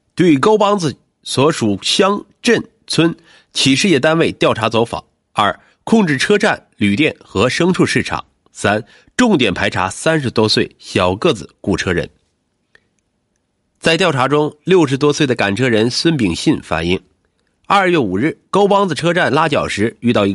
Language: Chinese